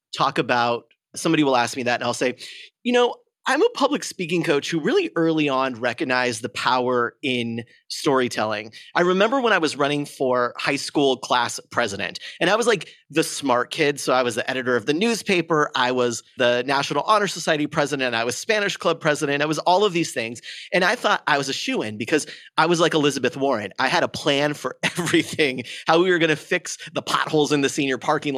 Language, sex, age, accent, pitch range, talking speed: English, male, 30-49, American, 125-165 Hz, 215 wpm